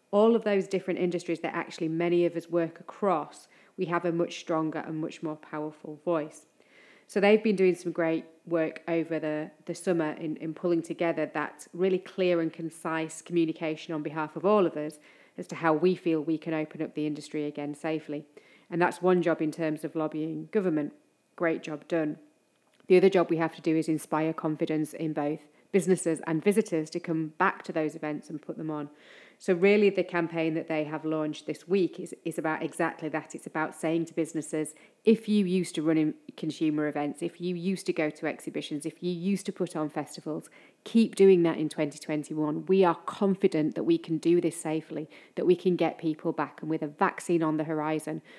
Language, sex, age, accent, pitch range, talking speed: English, female, 30-49, British, 155-175 Hz, 205 wpm